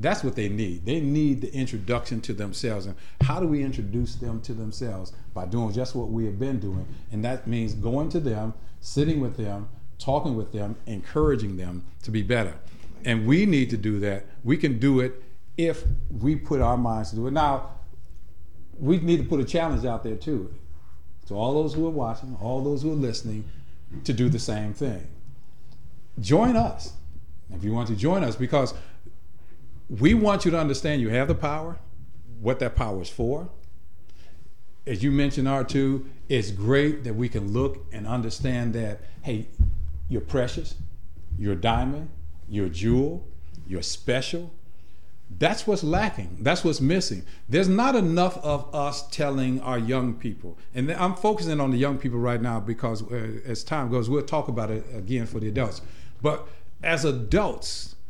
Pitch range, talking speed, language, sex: 100-140 Hz, 180 wpm, English, male